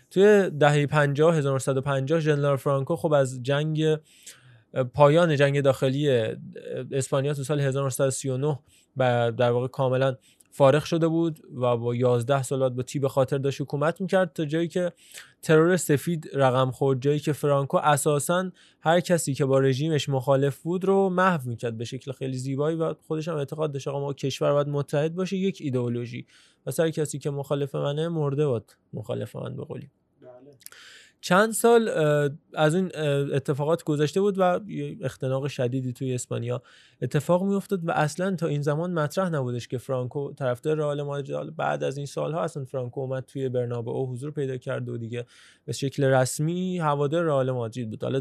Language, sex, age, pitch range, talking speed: Persian, male, 20-39, 130-155 Hz, 160 wpm